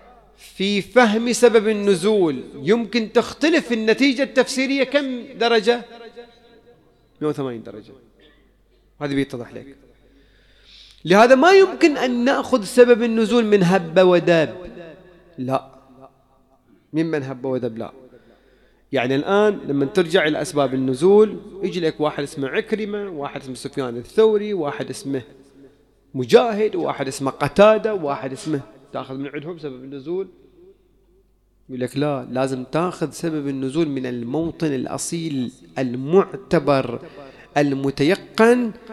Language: English